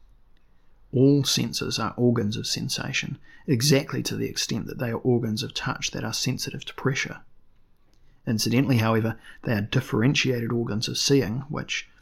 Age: 30-49